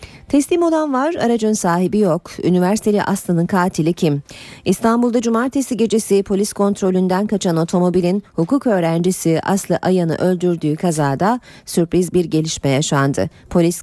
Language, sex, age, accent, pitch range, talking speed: Turkish, female, 40-59, native, 160-215 Hz, 120 wpm